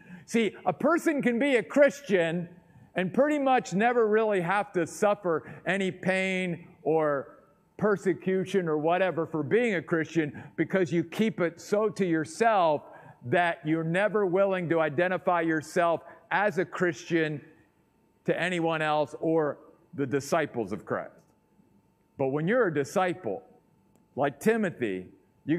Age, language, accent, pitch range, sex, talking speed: 50-69, English, American, 160-210 Hz, male, 135 wpm